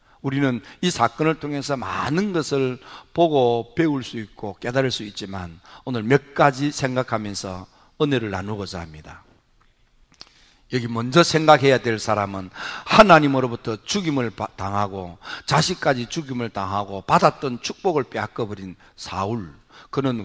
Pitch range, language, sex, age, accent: 110-155 Hz, Korean, male, 50-69, native